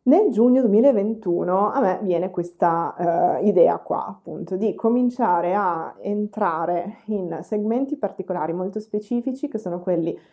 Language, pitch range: Italian, 180-230 Hz